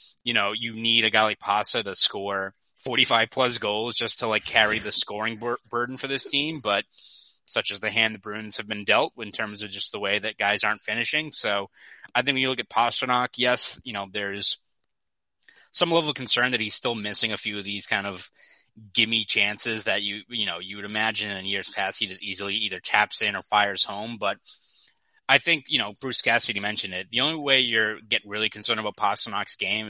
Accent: American